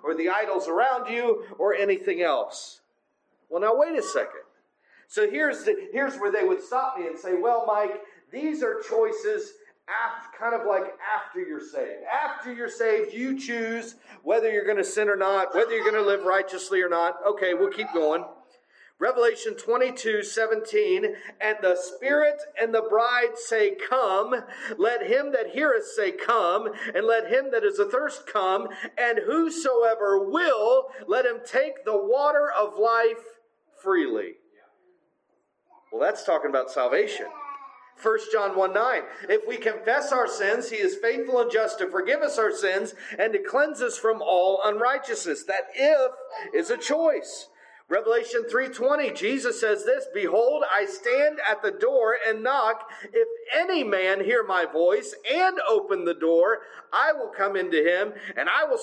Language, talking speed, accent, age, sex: English, 165 wpm, American, 40-59, male